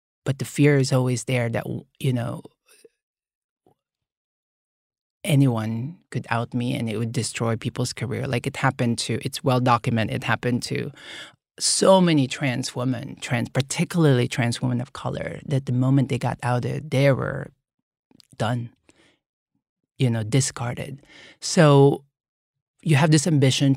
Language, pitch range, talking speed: English, 125-155 Hz, 140 wpm